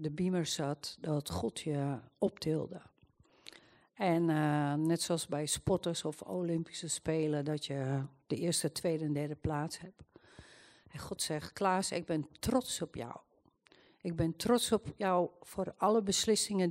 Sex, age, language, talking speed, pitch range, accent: female, 50-69, Dutch, 150 wpm, 155-185 Hz, Dutch